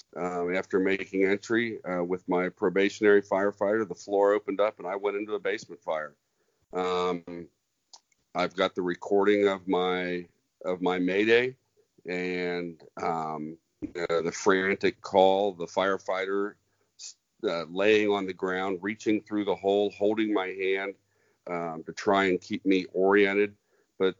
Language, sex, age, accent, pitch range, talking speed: English, male, 40-59, American, 90-105 Hz, 145 wpm